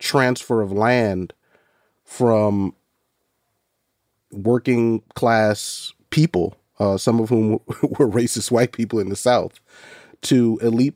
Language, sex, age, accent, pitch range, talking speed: English, male, 30-49, American, 110-125 Hz, 110 wpm